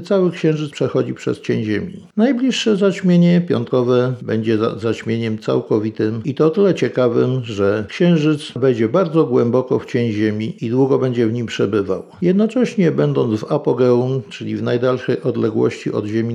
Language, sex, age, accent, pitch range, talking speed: Polish, male, 50-69, native, 115-160 Hz, 155 wpm